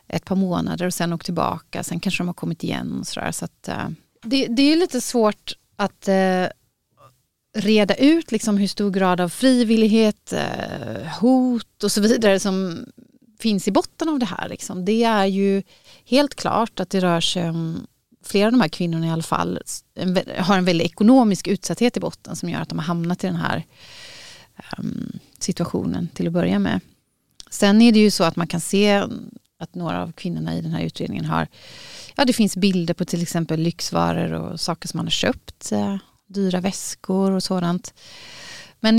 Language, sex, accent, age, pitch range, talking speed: Swedish, female, native, 30-49, 170-220 Hz, 195 wpm